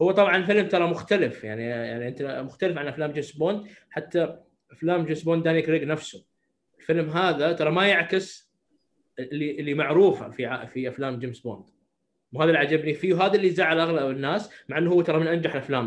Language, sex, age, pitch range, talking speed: Arabic, male, 20-39, 140-175 Hz, 185 wpm